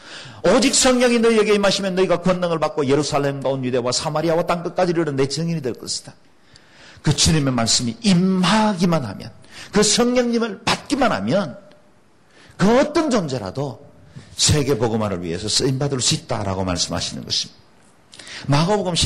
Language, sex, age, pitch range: Korean, male, 50-69, 120-180 Hz